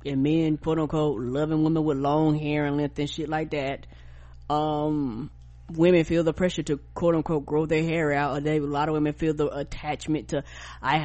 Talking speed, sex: 195 wpm, female